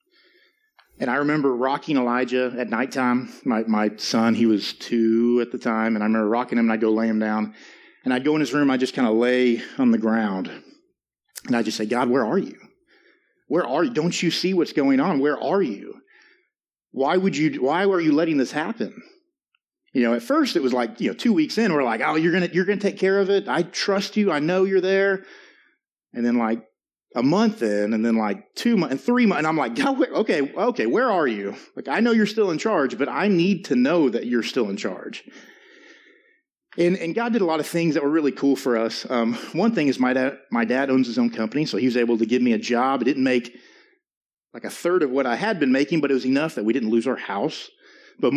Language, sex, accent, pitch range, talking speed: English, male, American, 120-195 Hz, 250 wpm